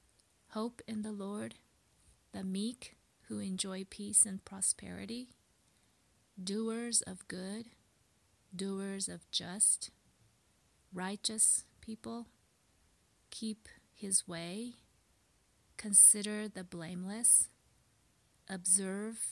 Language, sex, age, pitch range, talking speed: English, female, 30-49, 170-215 Hz, 80 wpm